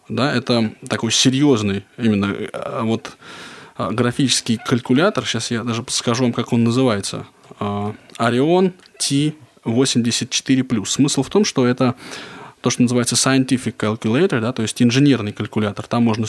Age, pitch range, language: 20-39, 115-135 Hz, Russian